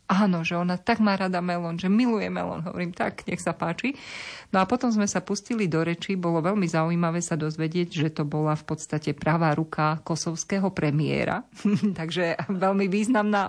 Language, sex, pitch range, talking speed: Slovak, female, 150-180 Hz, 180 wpm